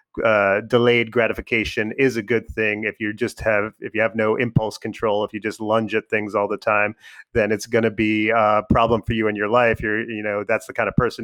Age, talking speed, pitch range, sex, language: 30-49, 245 wpm, 110-125 Hz, male, English